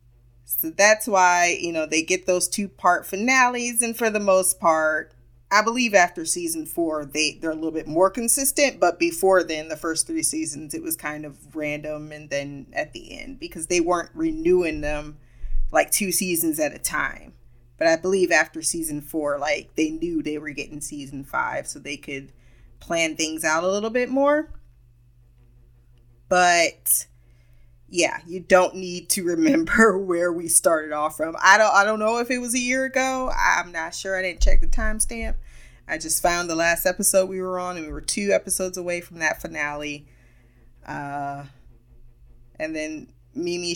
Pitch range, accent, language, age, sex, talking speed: 145-200 Hz, American, English, 20-39, female, 180 wpm